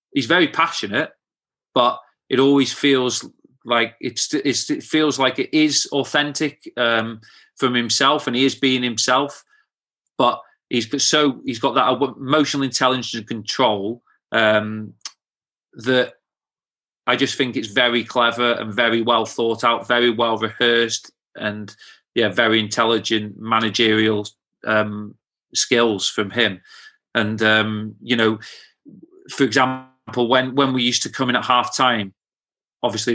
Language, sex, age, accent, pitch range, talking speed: English, male, 30-49, British, 110-125 Hz, 140 wpm